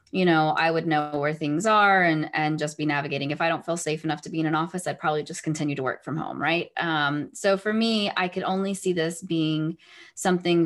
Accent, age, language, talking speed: American, 20-39, English, 250 wpm